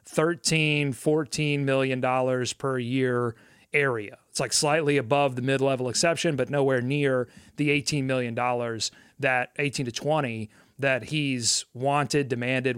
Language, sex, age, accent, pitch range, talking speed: English, male, 30-49, American, 125-155 Hz, 135 wpm